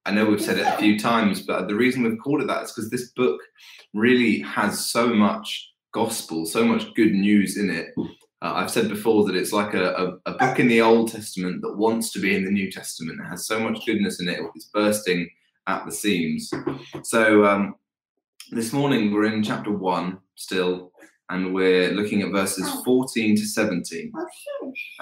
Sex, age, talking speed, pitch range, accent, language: male, 20-39, 195 wpm, 95-125 Hz, British, English